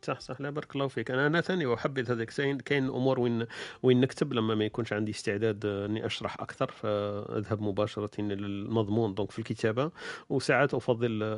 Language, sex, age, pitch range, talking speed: Arabic, male, 40-59, 110-135 Hz, 175 wpm